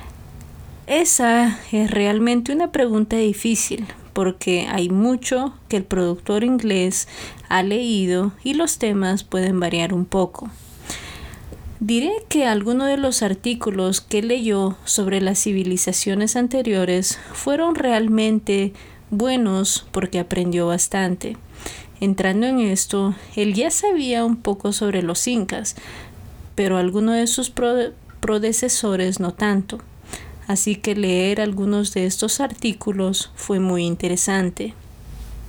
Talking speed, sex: 115 wpm, female